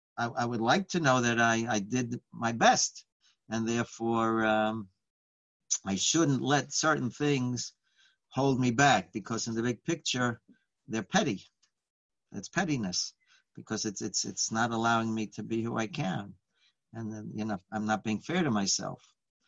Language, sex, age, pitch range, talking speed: English, male, 60-79, 110-140 Hz, 165 wpm